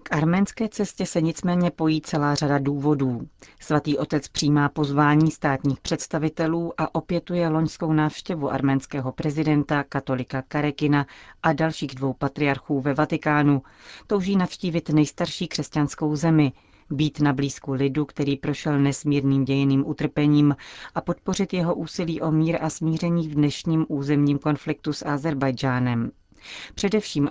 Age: 40-59